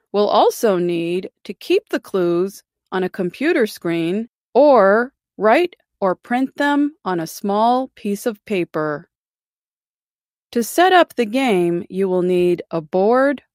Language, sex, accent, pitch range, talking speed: English, female, American, 180-285 Hz, 140 wpm